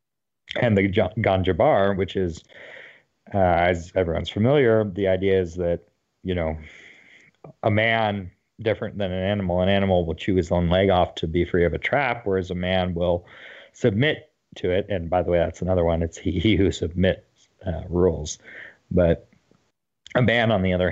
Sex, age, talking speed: male, 40-59, 180 wpm